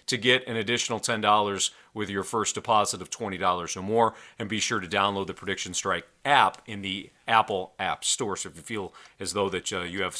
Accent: American